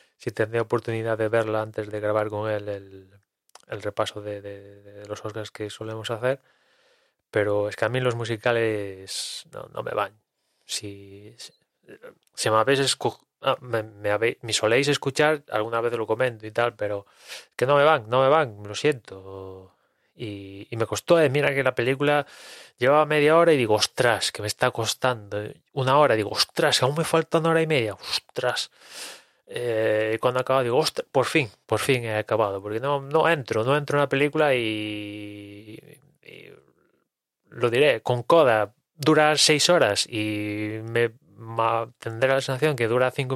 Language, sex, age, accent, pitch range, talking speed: English, male, 20-39, Spanish, 105-140 Hz, 185 wpm